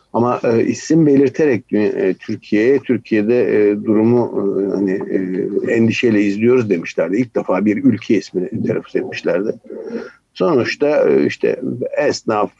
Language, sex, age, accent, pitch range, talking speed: Turkish, male, 60-79, native, 105-125 Hz, 125 wpm